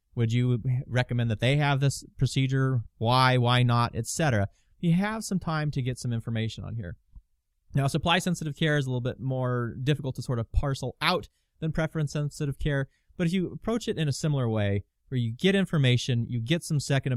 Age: 30-49